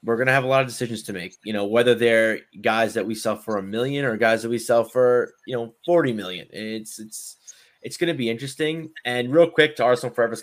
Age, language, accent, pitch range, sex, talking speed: 20-39, English, American, 115-145 Hz, male, 240 wpm